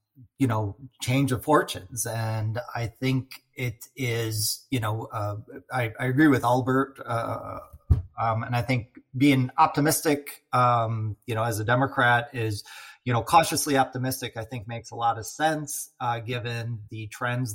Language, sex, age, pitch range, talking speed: English, male, 30-49, 110-125 Hz, 160 wpm